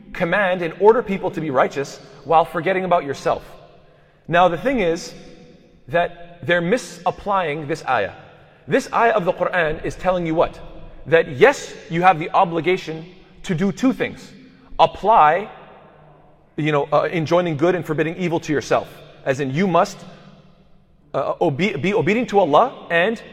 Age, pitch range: 30-49, 165-210 Hz